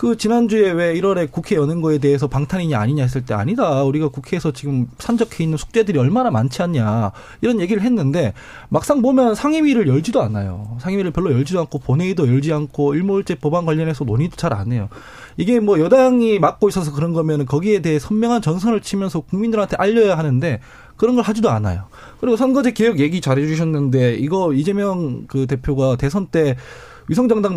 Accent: native